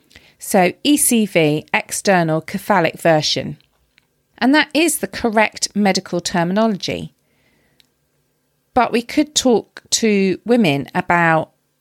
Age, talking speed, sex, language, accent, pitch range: 40-59, 95 wpm, female, English, British, 165-220 Hz